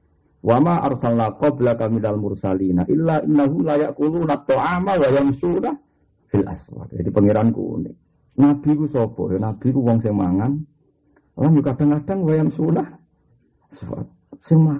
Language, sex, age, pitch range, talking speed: Malay, male, 50-69, 105-145 Hz, 100 wpm